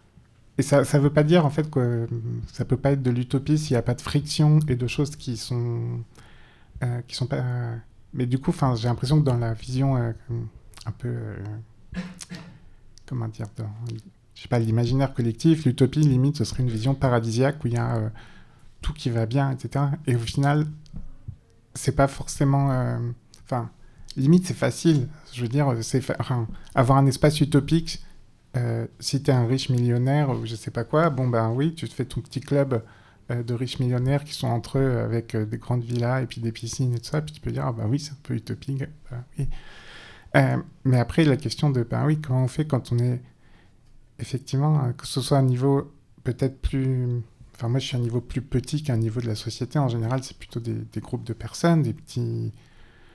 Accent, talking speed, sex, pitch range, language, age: French, 220 wpm, male, 115-140 Hz, French, 20-39